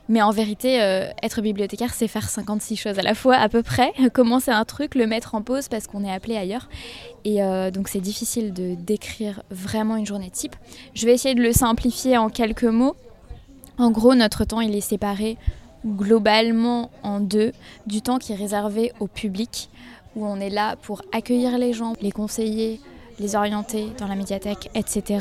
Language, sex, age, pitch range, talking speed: French, female, 20-39, 200-230 Hz, 195 wpm